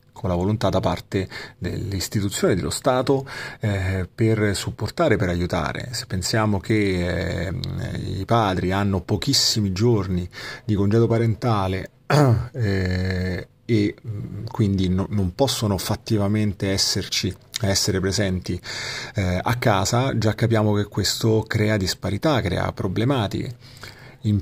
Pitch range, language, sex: 95-120 Hz, Italian, male